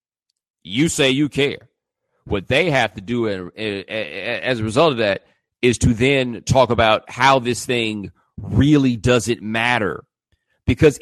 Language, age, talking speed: English, 40-59, 140 wpm